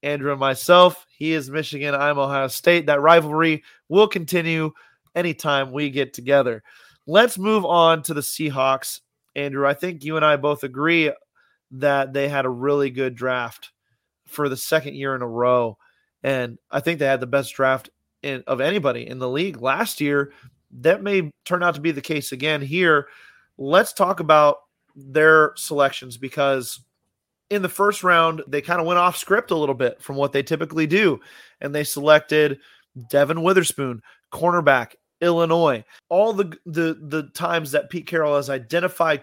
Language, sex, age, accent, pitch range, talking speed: English, male, 30-49, American, 140-165 Hz, 170 wpm